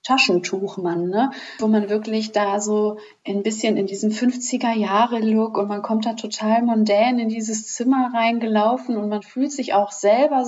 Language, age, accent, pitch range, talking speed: German, 30-49, German, 210-260 Hz, 160 wpm